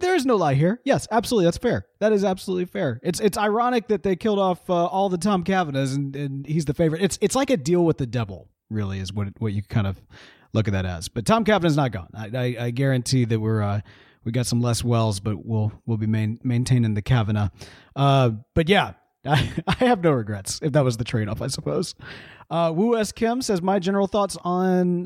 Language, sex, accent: English, male, American